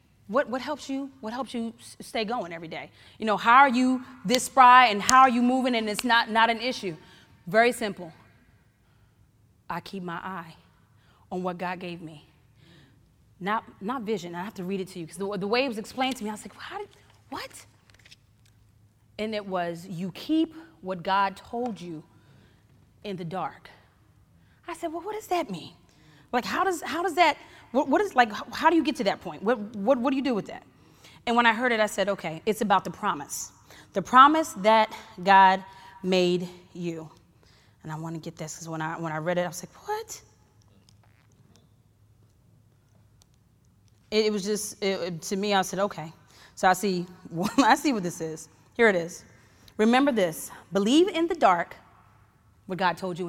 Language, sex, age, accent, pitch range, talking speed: English, female, 30-49, American, 160-240 Hz, 200 wpm